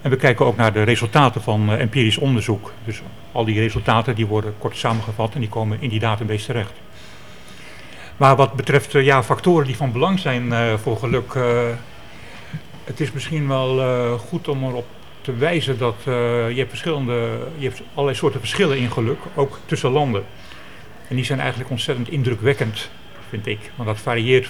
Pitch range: 110-135 Hz